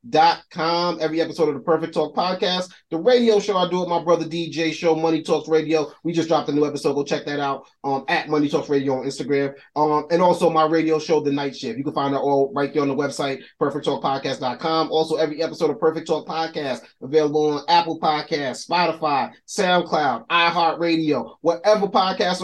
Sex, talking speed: male, 200 wpm